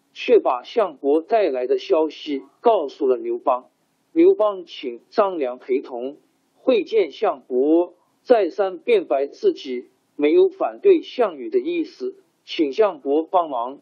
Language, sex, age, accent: Chinese, male, 50-69, native